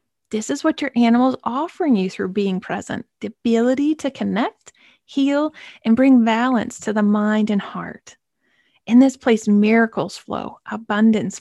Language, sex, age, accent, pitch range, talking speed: English, female, 30-49, American, 205-250 Hz, 160 wpm